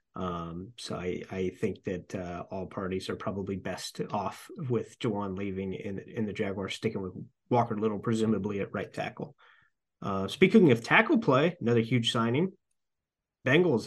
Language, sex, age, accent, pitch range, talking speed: English, male, 30-49, American, 100-120 Hz, 160 wpm